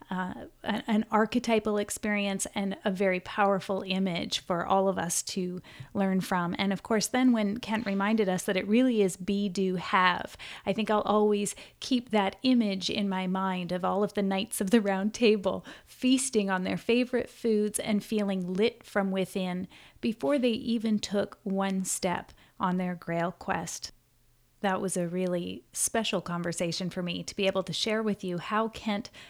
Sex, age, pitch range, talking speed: female, 30-49, 180-215 Hz, 180 wpm